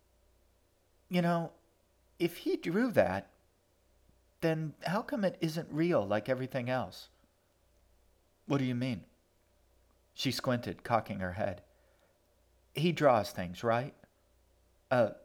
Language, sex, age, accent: English, male, 50-69, American